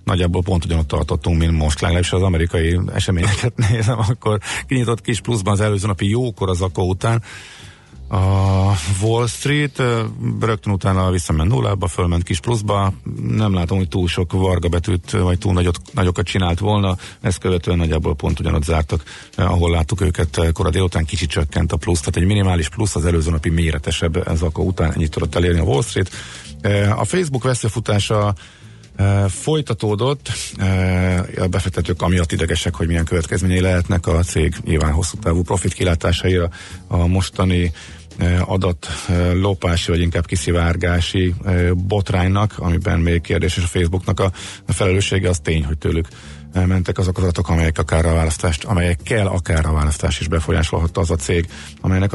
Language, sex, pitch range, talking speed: Hungarian, male, 85-100 Hz, 155 wpm